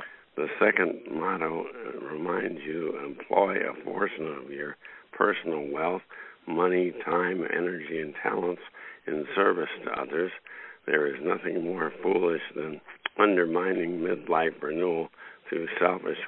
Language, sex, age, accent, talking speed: English, male, 60-79, American, 120 wpm